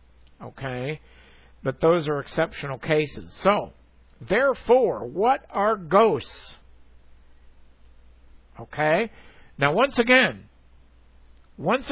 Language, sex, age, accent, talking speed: English, male, 60-79, American, 80 wpm